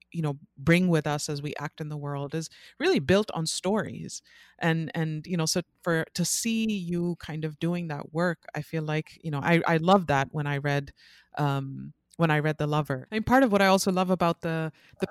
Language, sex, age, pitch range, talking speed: English, female, 30-49, 155-185 Hz, 230 wpm